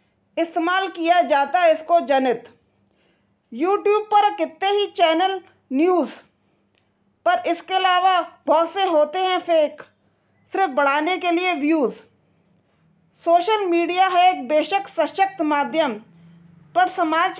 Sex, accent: female, native